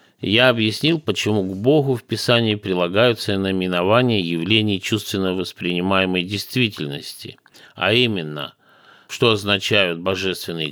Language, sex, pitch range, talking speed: Russian, male, 90-115 Hz, 100 wpm